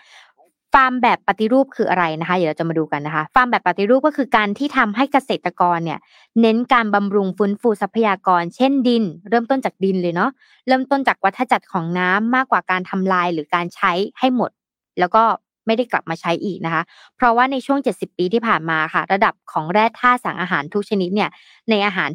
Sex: female